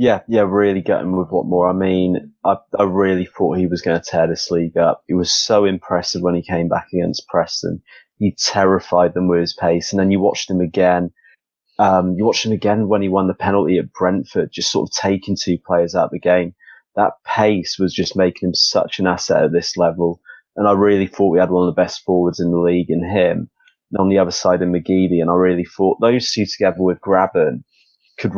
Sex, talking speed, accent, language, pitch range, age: male, 235 wpm, British, English, 90-100 Hz, 20-39